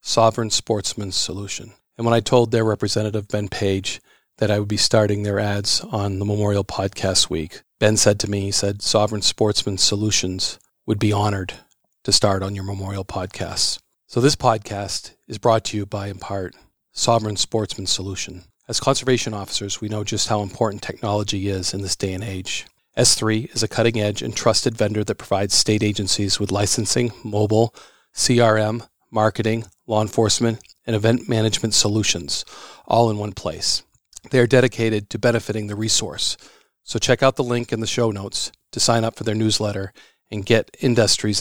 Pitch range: 100-115 Hz